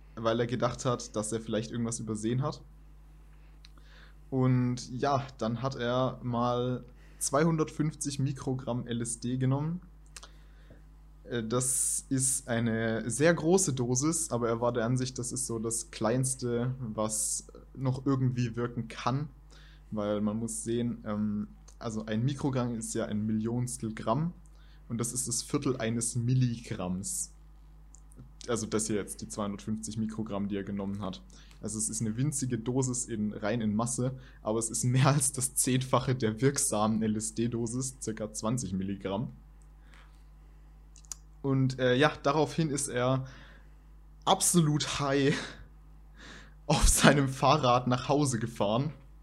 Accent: German